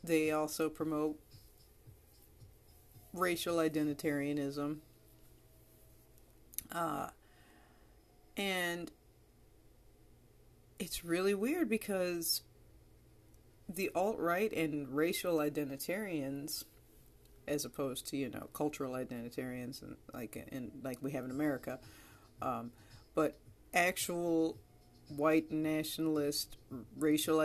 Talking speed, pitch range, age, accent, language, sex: 80 wpm, 130-160 Hz, 40-59, American, English, female